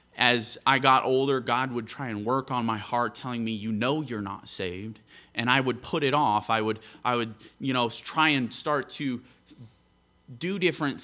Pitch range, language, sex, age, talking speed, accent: 110-130 Hz, English, male, 30-49, 200 wpm, American